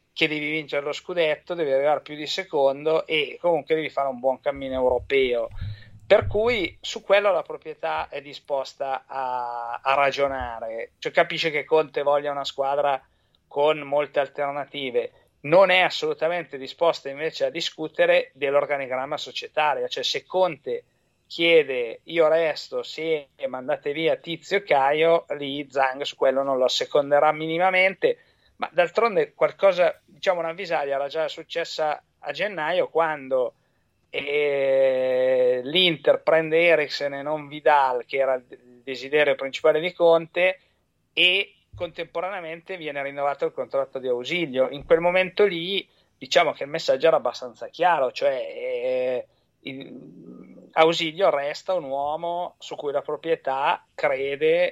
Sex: male